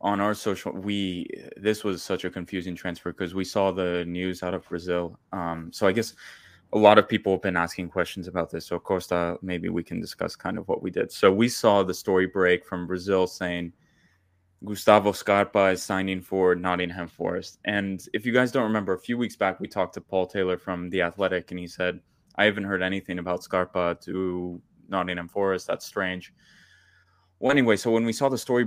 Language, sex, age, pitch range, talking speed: English, male, 20-39, 90-95 Hz, 205 wpm